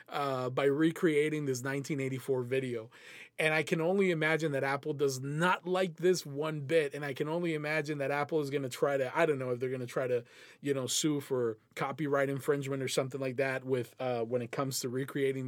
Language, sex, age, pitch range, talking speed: English, male, 20-39, 130-170 Hz, 220 wpm